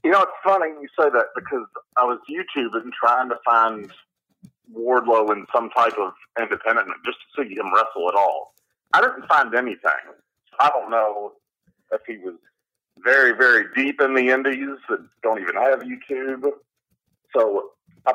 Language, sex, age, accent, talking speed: English, male, 40-59, American, 170 wpm